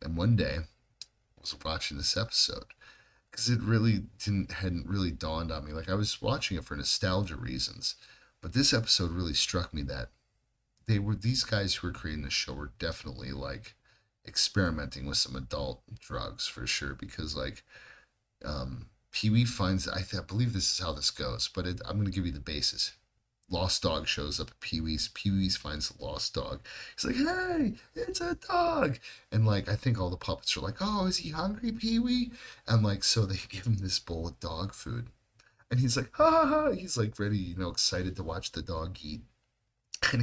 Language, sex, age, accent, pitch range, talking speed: English, male, 40-59, American, 85-115 Hz, 200 wpm